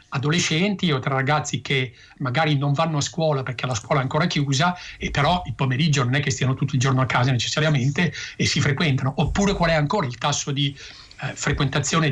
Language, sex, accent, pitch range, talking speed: Italian, male, native, 135-160 Hz, 205 wpm